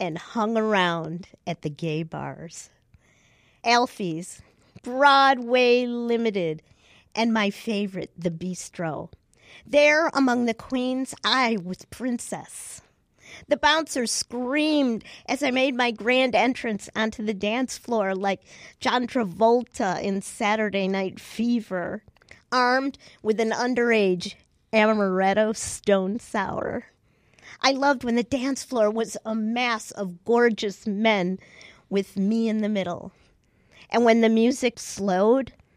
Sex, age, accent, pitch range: female, 40-59, American, 190-245 Hz